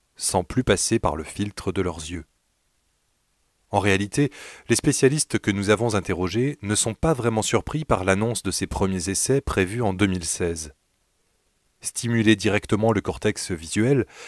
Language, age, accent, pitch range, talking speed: French, 30-49, French, 95-120 Hz, 150 wpm